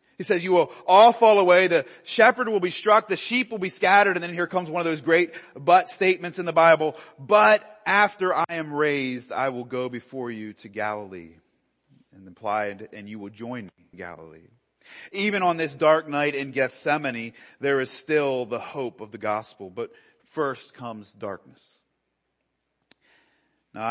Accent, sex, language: American, male, English